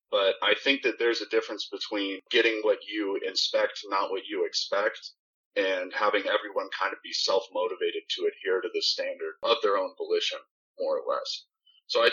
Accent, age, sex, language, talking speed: American, 30-49, male, English, 185 wpm